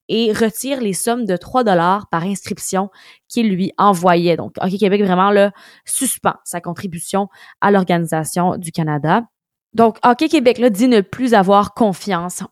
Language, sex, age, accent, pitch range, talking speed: French, female, 20-39, Canadian, 185-225 Hz, 150 wpm